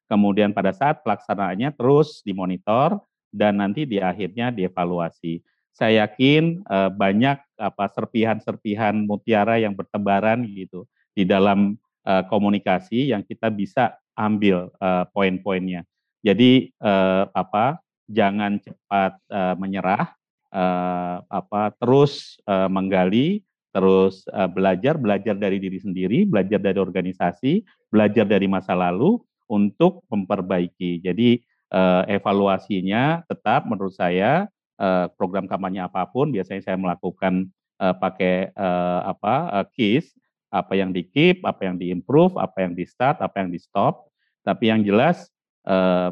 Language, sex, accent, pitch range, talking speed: Indonesian, male, native, 95-110 Hz, 125 wpm